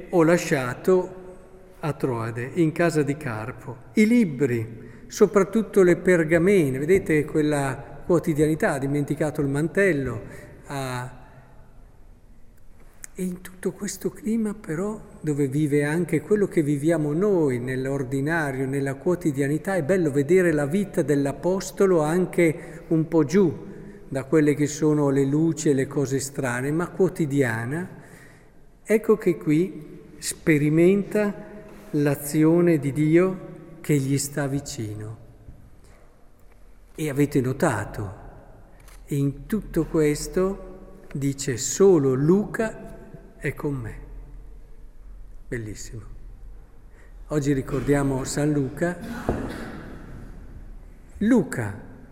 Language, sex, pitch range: Italian, male, 135-180 Hz